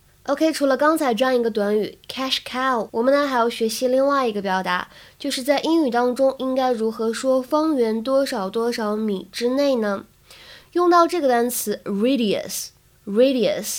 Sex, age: female, 20-39